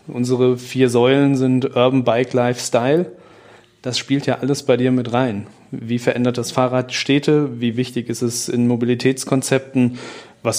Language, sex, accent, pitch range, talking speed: German, male, German, 120-135 Hz, 155 wpm